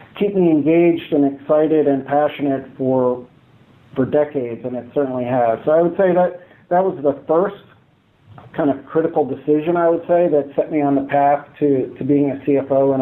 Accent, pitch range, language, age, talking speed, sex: American, 135-155 Hz, English, 50-69, 195 wpm, male